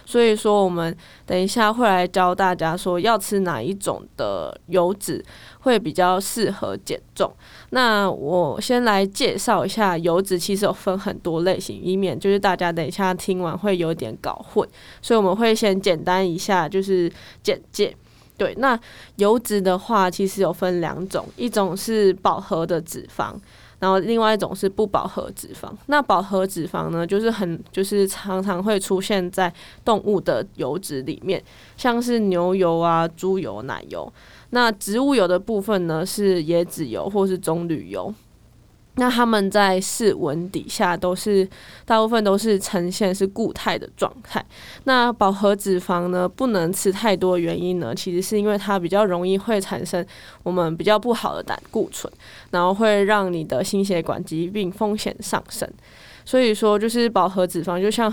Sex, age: female, 20-39